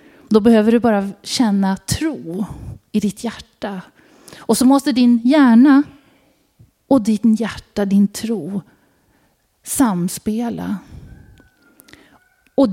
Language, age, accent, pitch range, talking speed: Swedish, 30-49, native, 210-285 Hz, 100 wpm